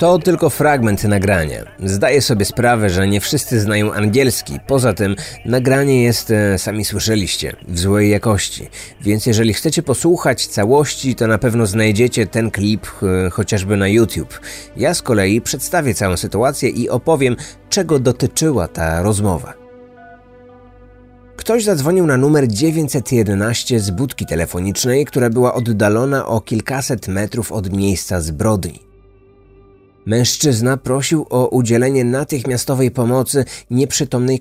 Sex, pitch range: male, 100-135 Hz